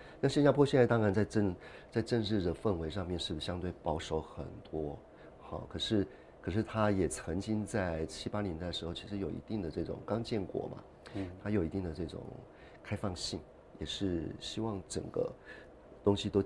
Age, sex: 50-69, male